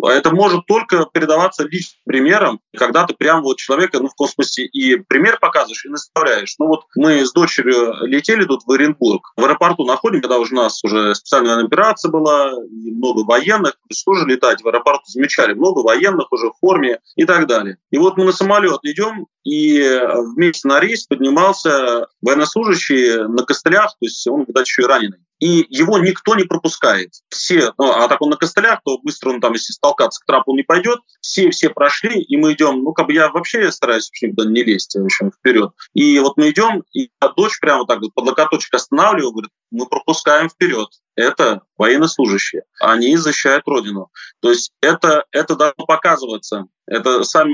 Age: 30-49